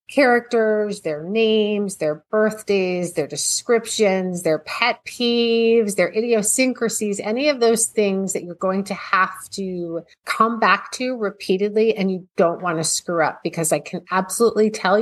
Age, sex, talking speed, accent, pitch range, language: 30-49, female, 150 wpm, American, 180-230 Hz, English